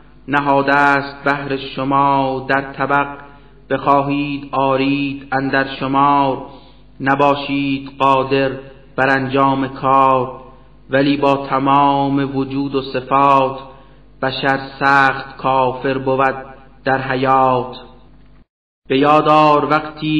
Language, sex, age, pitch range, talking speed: Persian, male, 30-49, 135-145 Hz, 90 wpm